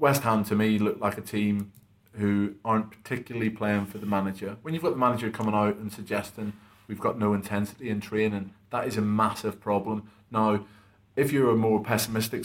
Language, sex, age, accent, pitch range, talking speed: English, male, 30-49, British, 105-120 Hz, 200 wpm